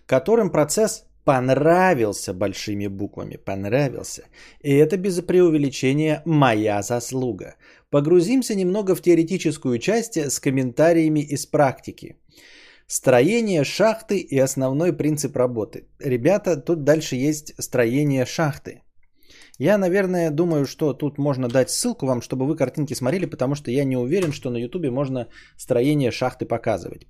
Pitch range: 125-175 Hz